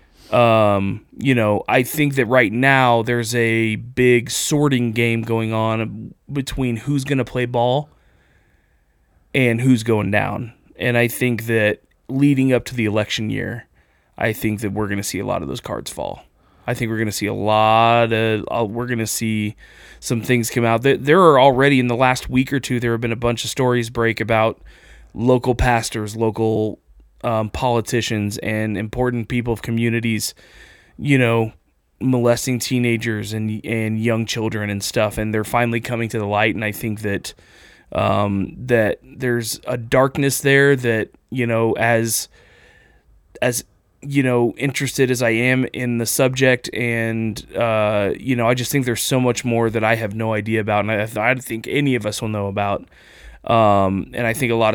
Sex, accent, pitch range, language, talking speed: male, American, 110-125 Hz, English, 185 wpm